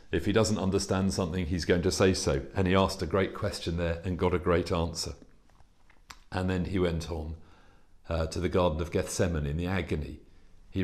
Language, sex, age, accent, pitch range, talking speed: English, male, 40-59, British, 85-100 Hz, 205 wpm